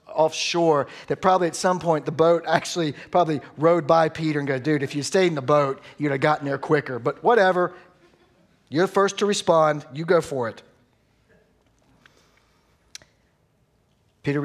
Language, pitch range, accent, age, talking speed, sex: English, 120-155 Hz, American, 50-69, 160 wpm, male